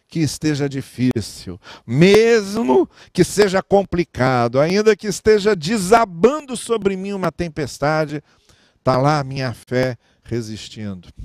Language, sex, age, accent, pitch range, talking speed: German, male, 50-69, Brazilian, 120-155 Hz, 110 wpm